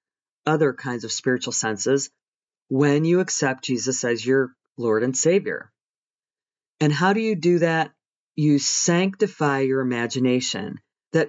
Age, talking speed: 40-59, 135 wpm